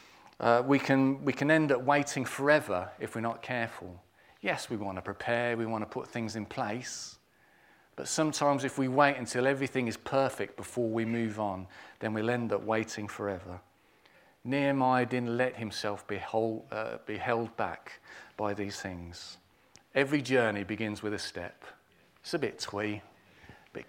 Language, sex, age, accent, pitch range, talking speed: English, male, 40-59, British, 105-135 Hz, 175 wpm